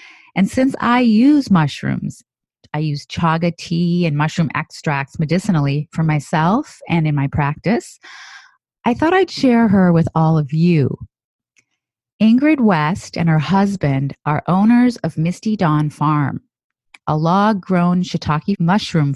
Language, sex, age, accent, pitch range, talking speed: English, female, 30-49, American, 150-200 Hz, 135 wpm